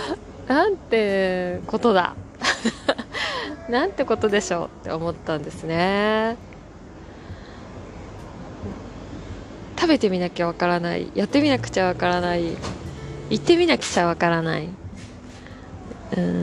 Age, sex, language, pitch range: 20-39, female, Japanese, 160-235 Hz